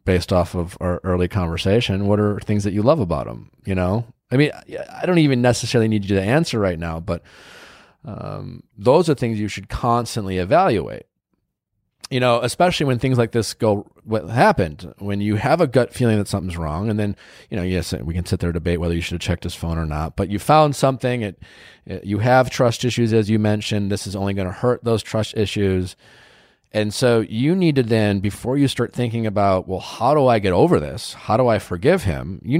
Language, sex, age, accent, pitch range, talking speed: English, male, 30-49, American, 95-130 Hz, 220 wpm